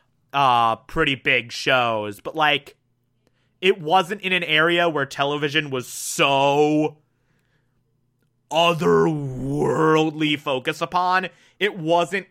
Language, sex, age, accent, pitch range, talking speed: English, male, 30-49, American, 130-165 Hz, 95 wpm